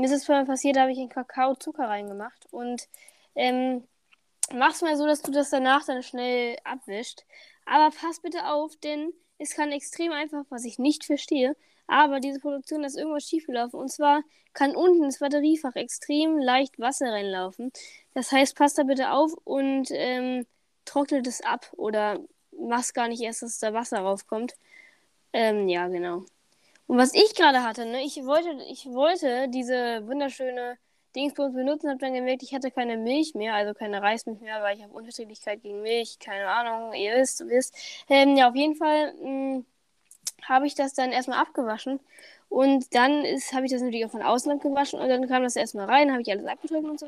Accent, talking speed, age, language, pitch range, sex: German, 190 wpm, 10-29, German, 245-300 Hz, female